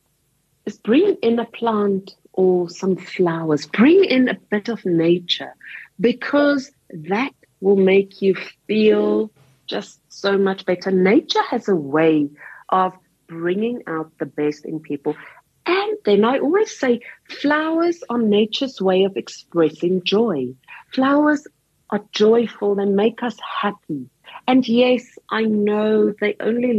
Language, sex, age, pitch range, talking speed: English, female, 50-69, 160-235 Hz, 135 wpm